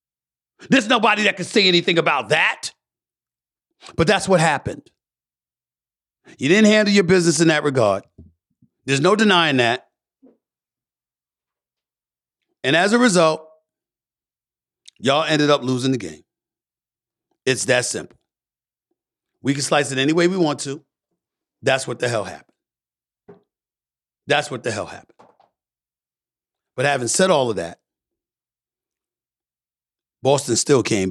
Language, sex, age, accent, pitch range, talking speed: English, male, 50-69, American, 120-165 Hz, 125 wpm